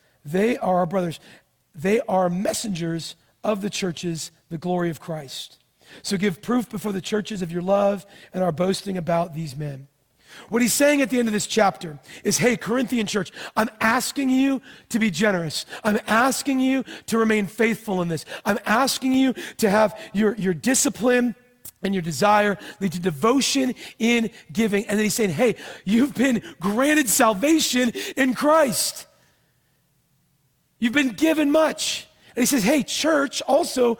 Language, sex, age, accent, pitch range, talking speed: English, male, 40-59, American, 195-265 Hz, 165 wpm